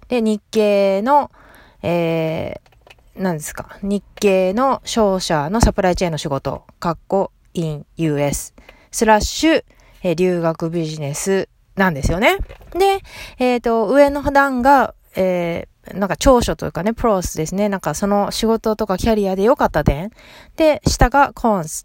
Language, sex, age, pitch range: Japanese, female, 30-49, 180-265 Hz